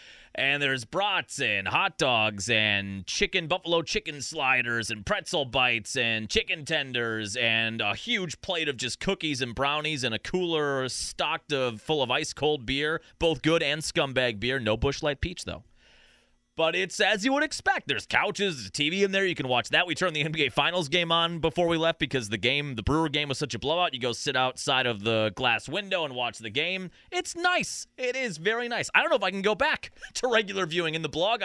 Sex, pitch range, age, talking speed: male, 125-175 Hz, 30-49, 215 wpm